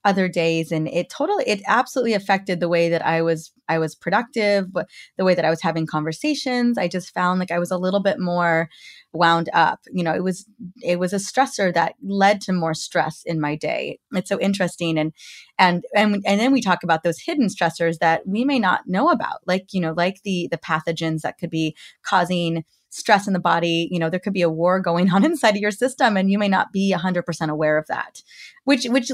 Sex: female